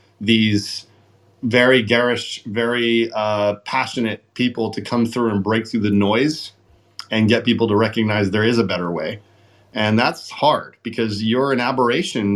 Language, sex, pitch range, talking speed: English, male, 100-120 Hz, 155 wpm